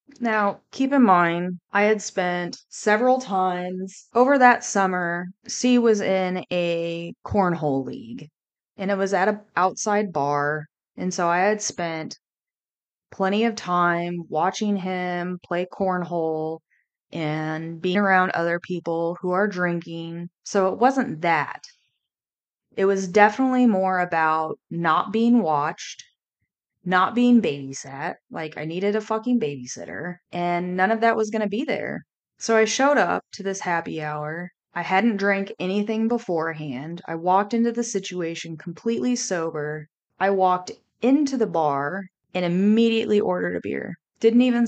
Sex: female